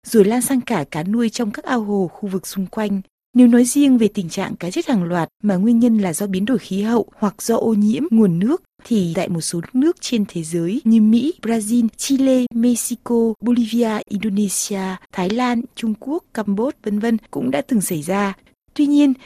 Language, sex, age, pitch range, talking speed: Vietnamese, female, 20-39, 185-240 Hz, 210 wpm